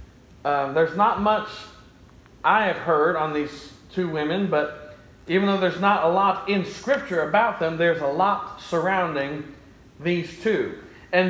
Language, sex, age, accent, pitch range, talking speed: English, male, 40-59, American, 165-210 Hz, 155 wpm